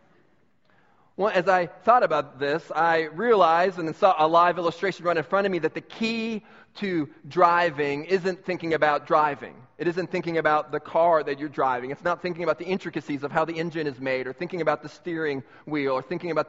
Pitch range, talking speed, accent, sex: 145-170 Hz, 215 wpm, American, male